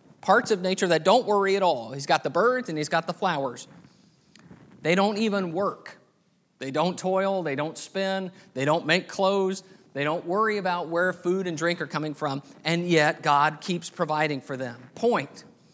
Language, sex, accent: English, male, American